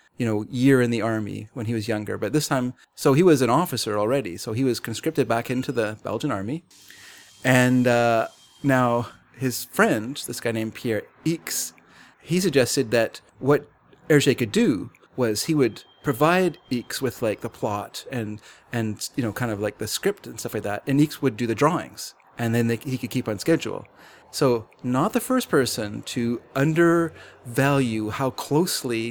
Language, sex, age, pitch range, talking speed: English, male, 30-49, 110-135 Hz, 185 wpm